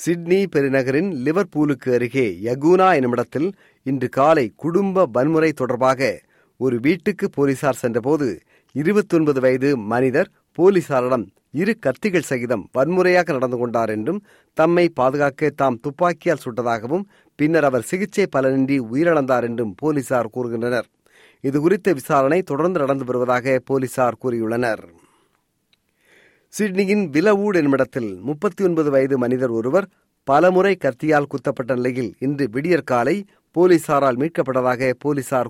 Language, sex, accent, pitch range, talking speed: Tamil, male, native, 130-175 Hz, 110 wpm